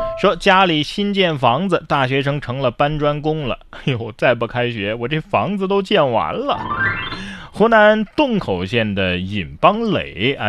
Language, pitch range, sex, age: Chinese, 100-155 Hz, male, 20-39